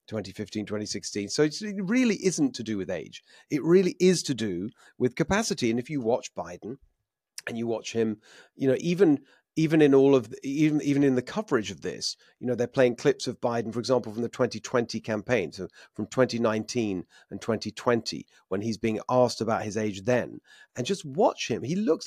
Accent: British